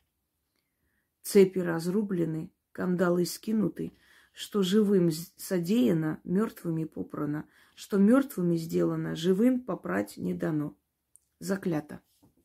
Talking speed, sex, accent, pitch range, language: 80 wpm, female, native, 160-200 Hz, Russian